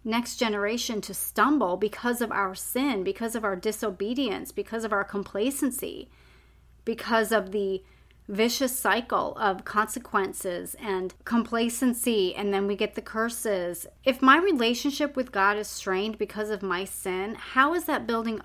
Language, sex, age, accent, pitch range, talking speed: English, female, 30-49, American, 195-245 Hz, 150 wpm